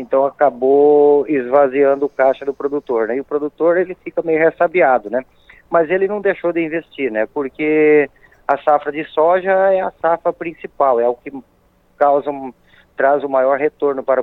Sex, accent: male, Brazilian